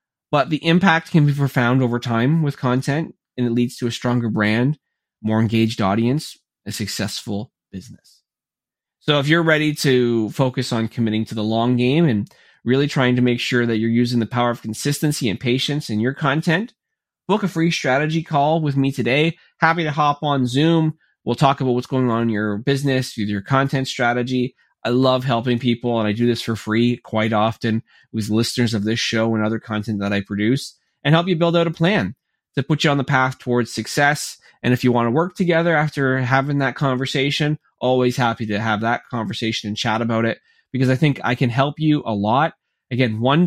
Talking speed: 205 wpm